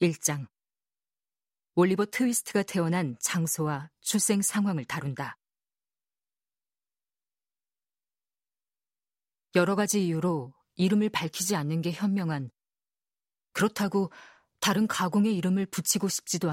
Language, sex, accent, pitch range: Korean, female, native, 160-195 Hz